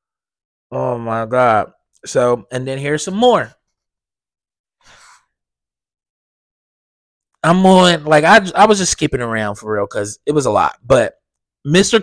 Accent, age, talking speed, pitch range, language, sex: American, 20-39, 135 wpm, 145-180 Hz, English, male